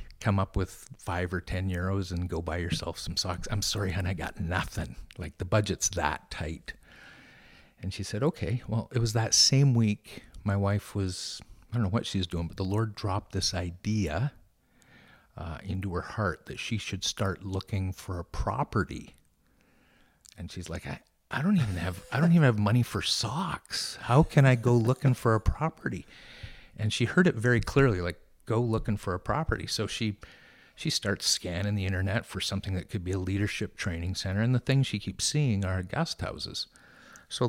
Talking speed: 195 wpm